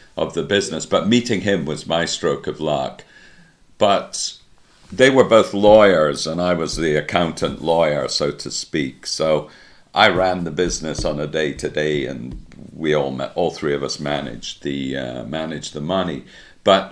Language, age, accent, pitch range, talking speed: English, 50-69, British, 75-85 Hz, 170 wpm